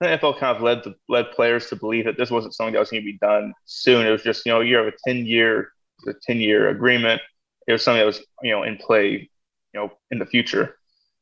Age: 20-39